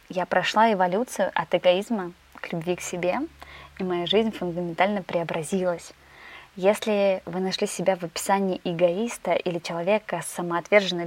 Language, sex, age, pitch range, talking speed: Russian, female, 20-39, 175-205 Hz, 135 wpm